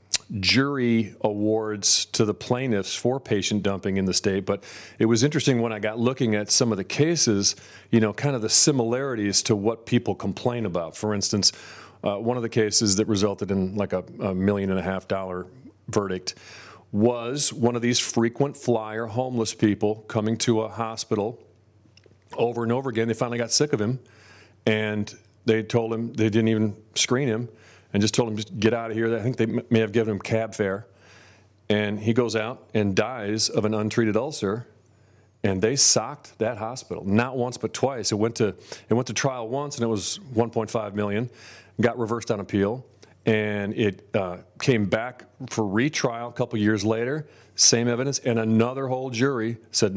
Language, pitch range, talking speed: English, 105-120 Hz, 190 wpm